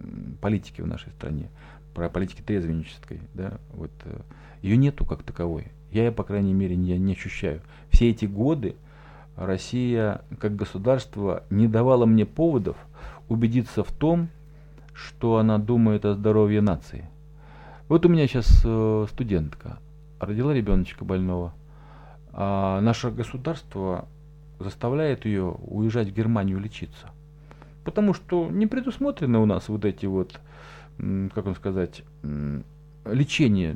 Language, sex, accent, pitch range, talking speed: Russian, male, native, 100-150 Hz, 120 wpm